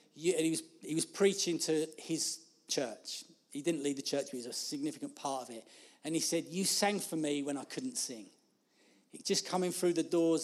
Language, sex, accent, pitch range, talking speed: English, male, British, 145-170 Hz, 220 wpm